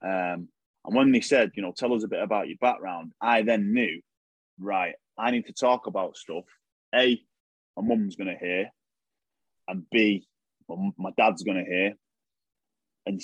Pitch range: 95-125 Hz